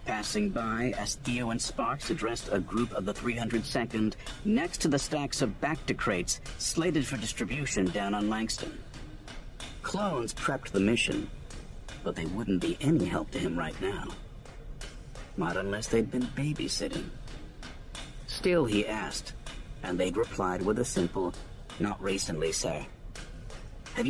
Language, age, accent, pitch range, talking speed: English, 50-69, American, 105-135 Hz, 145 wpm